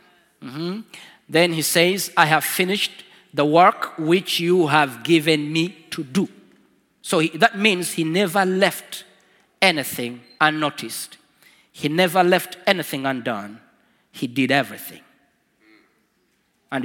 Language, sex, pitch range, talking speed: Swedish, male, 150-215 Hz, 120 wpm